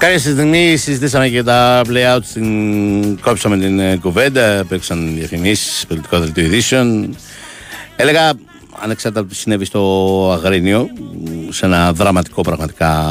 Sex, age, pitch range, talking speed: male, 60-79, 85-100 Hz, 130 wpm